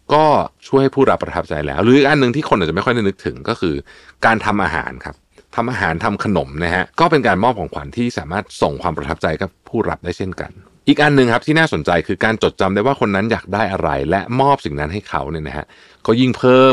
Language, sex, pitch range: Thai, male, 85-120 Hz